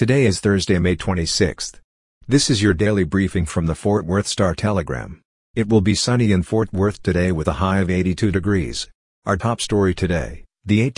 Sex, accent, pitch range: male, American, 90-105 Hz